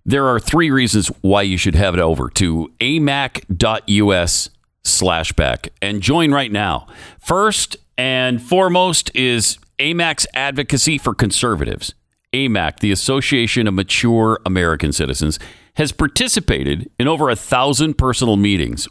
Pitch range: 95-140 Hz